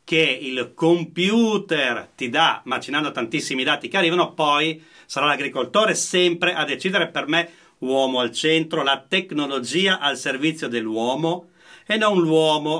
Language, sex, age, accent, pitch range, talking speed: Italian, male, 40-59, native, 130-170 Hz, 135 wpm